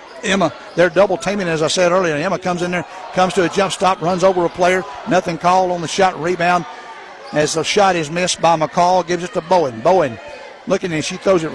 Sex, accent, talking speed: male, American, 225 wpm